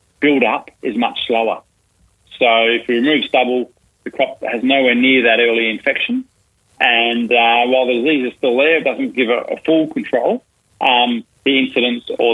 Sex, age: male, 30-49